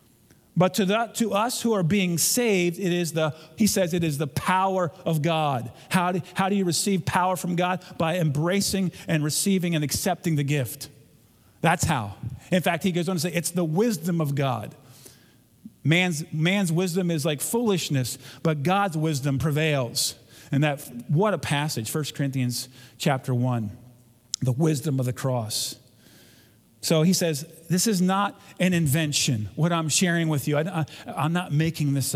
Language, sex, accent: English, male, American